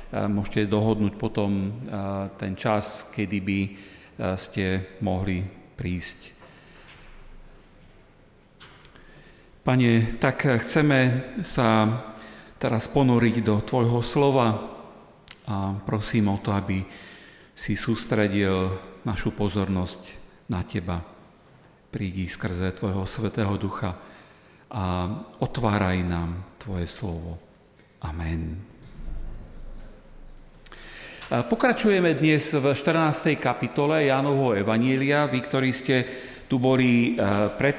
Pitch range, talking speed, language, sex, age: 105-140 Hz, 85 wpm, Slovak, male, 40-59